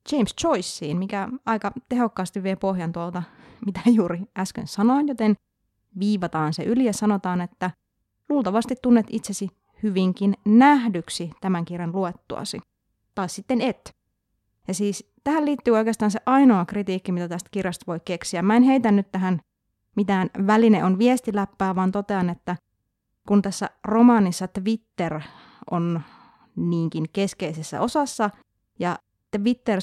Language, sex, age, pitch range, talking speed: Finnish, female, 30-49, 175-220 Hz, 130 wpm